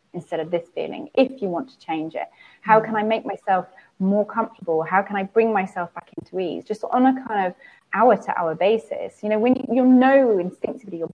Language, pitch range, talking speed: English, 190-250 Hz, 220 wpm